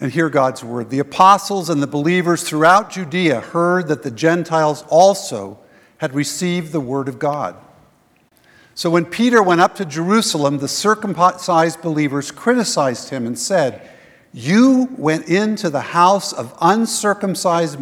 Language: English